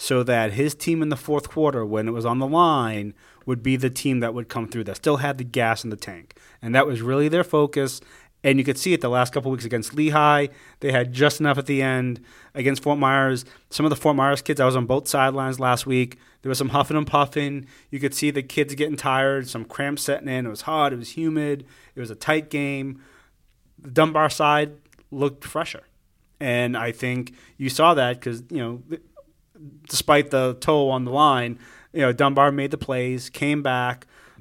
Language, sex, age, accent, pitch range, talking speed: English, male, 30-49, American, 120-145 Hz, 220 wpm